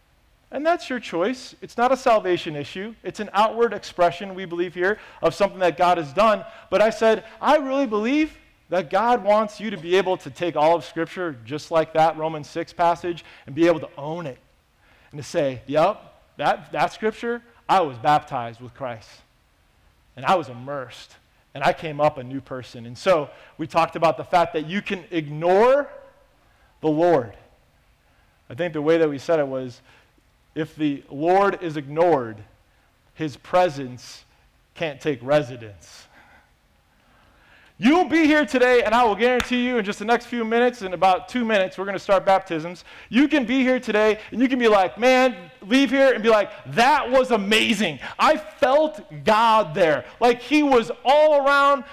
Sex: male